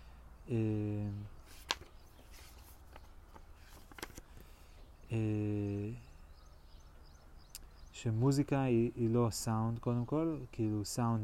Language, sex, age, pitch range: Hebrew, male, 30-49, 80-115 Hz